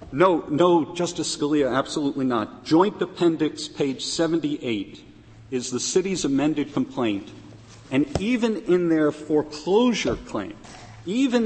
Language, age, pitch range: English, 50-69, 135-185 Hz